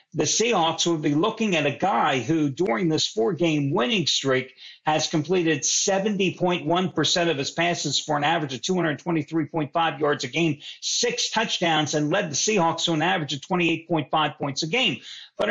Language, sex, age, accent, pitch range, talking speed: English, male, 50-69, American, 155-195 Hz, 165 wpm